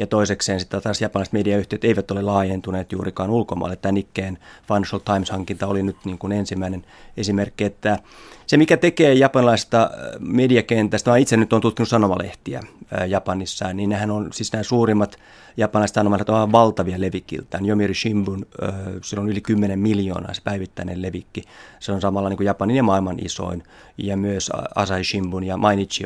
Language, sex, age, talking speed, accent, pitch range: Finnish, male, 30-49, 160 wpm, native, 95-115 Hz